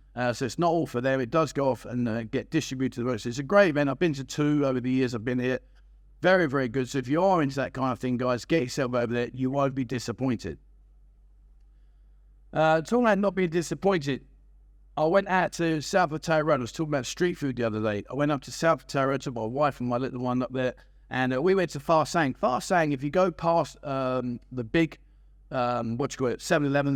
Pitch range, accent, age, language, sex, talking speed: 125-160 Hz, British, 50-69, English, male, 250 wpm